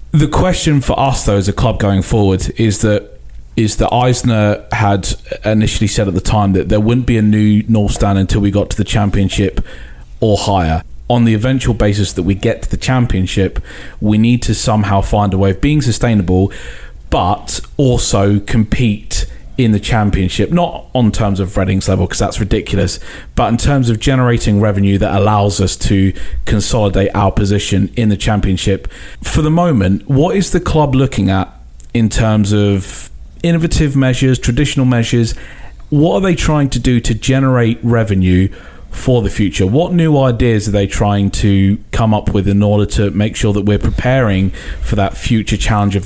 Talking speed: 180 wpm